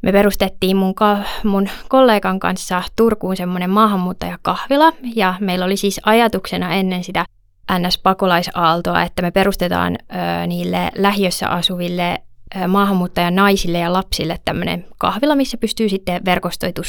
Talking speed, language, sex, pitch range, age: 125 wpm, Finnish, female, 180-215 Hz, 20-39